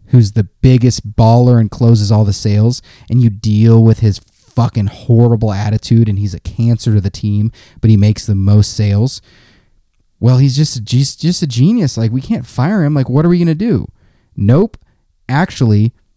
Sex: male